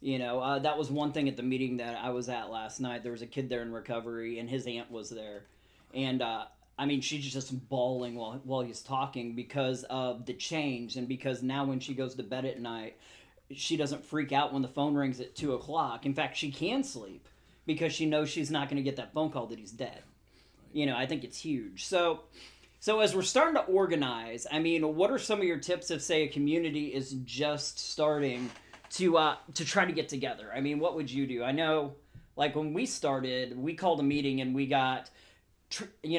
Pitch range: 125-150 Hz